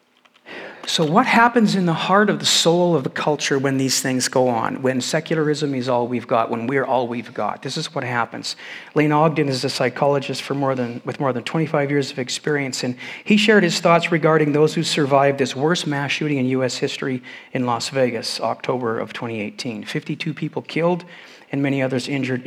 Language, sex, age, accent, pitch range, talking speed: English, male, 50-69, American, 140-175 Hz, 205 wpm